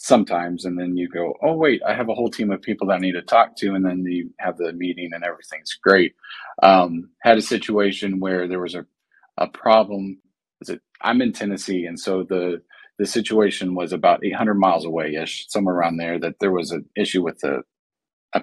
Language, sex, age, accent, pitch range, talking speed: English, male, 40-59, American, 90-110 Hz, 210 wpm